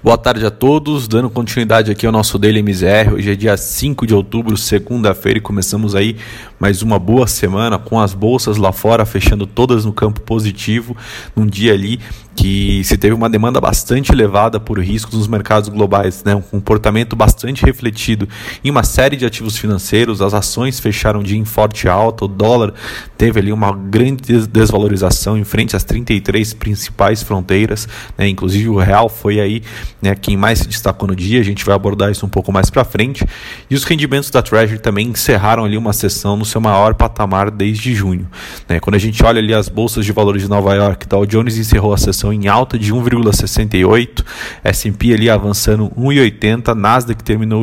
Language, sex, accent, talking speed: Portuguese, male, Brazilian, 185 wpm